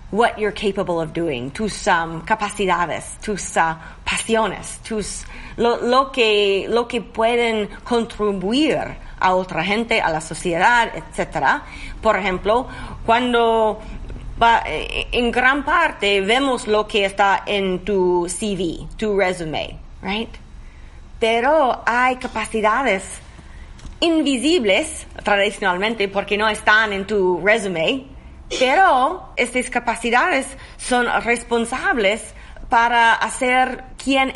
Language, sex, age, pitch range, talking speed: Spanish, female, 30-49, 195-240 Hz, 105 wpm